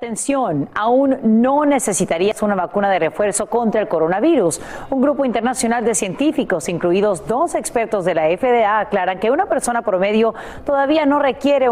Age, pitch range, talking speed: 40-59, 200-270 Hz, 155 wpm